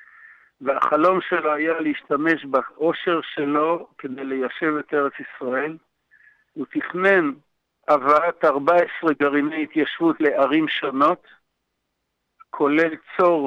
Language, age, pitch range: Hebrew, 60-79, 145-190 Hz